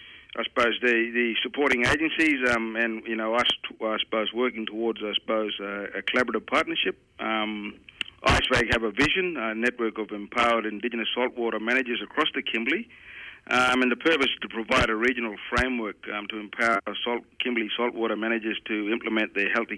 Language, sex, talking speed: English, male, 175 wpm